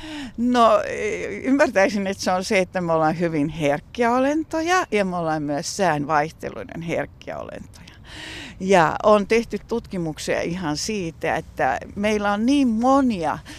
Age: 60-79